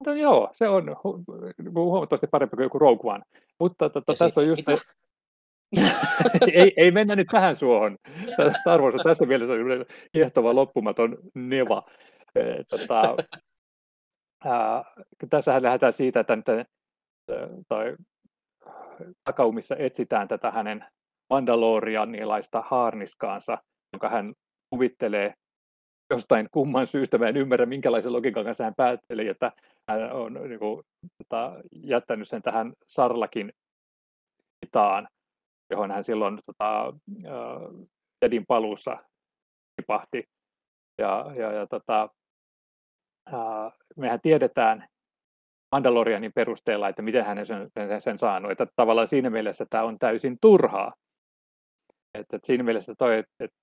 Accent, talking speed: native, 105 wpm